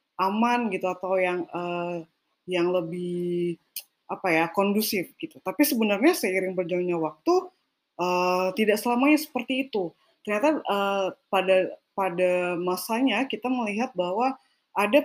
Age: 20-39